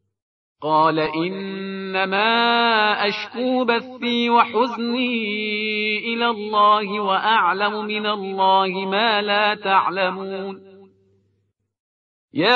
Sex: male